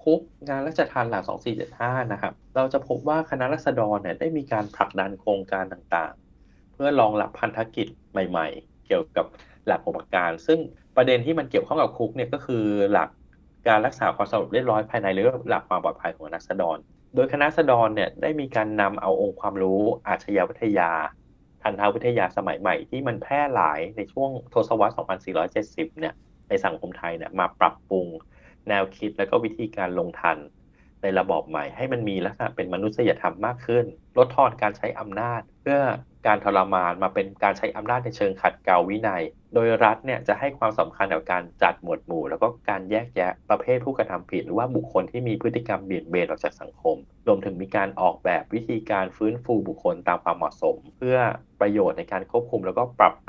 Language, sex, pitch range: Thai, male, 95-130 Hz